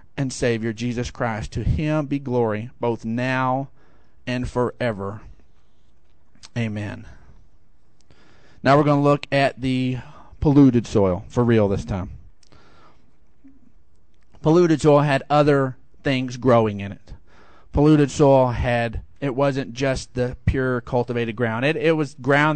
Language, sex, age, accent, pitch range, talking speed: English, male, 40-59, American, 125-205 Hz, 130 wpm